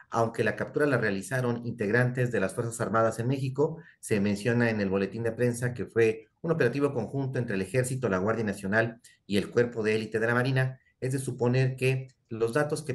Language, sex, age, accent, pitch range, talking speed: Spanish, male, 40-59, Mexican, 110-125 Hz, 210 wpm